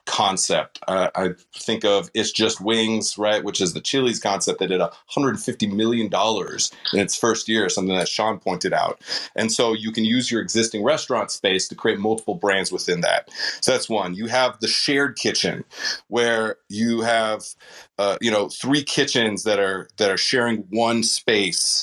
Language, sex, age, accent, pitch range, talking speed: English, male, 30-49, American, 95-115 Hz, 180 wpm